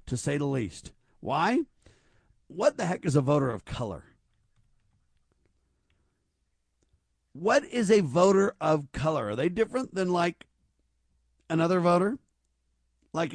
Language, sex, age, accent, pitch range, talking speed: English, male, 50-69, American, 115-175 Hz, 120 wpm